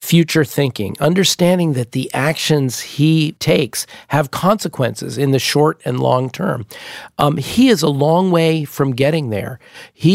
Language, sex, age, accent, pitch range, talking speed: English, male, 50-69, American, 125-165 Hz, 155 wpm